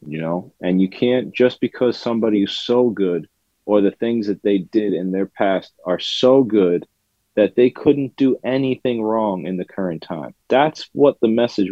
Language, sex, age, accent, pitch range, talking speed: English, male, 30-49, American, 95-120 Hz, 190 wpm